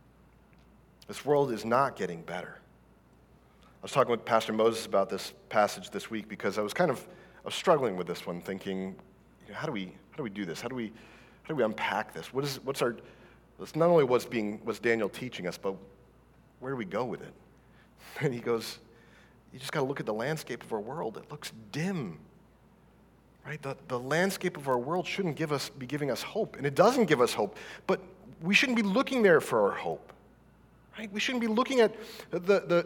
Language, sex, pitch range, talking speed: English, male, 115-180 Hz, 220 wpm